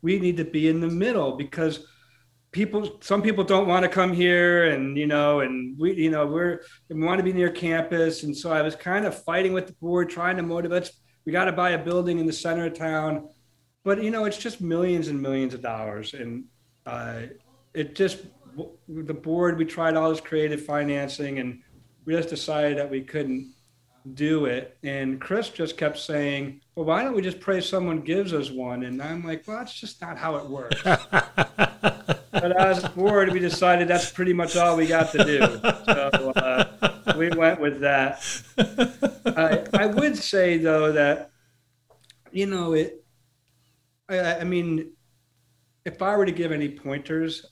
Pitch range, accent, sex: 135-180 Hz, American, male